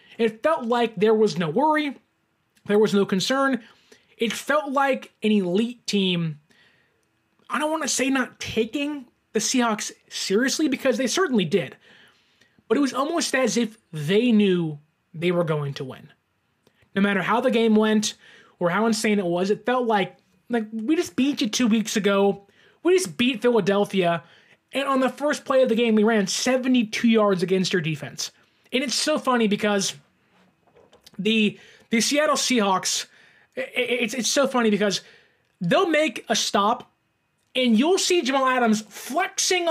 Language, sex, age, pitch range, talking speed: English, male, 20-39, 205-270 Hz, 165 wpm